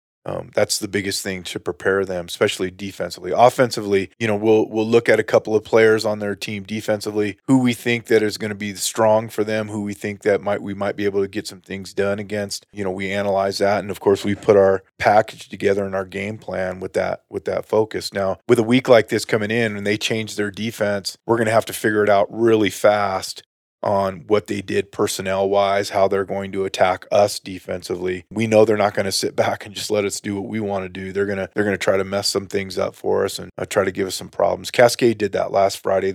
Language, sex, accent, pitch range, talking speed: English, male, American, 95-105 Hz, 250 wpm